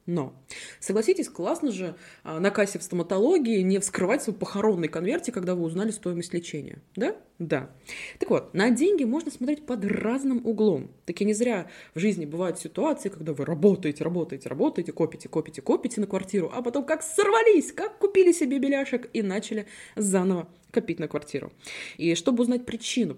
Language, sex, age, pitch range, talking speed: Russian, female, 20-39, 165-235 Hz, 165 wpm